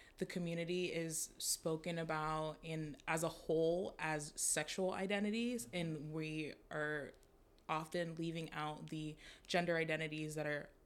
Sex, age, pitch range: female, 20-39, 155-175 Hz